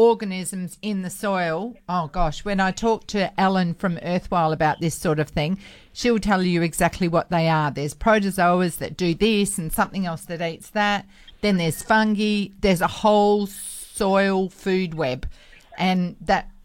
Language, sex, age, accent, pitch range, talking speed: English, female, 50-69, Australian, 170-200 Hz, 170 wpm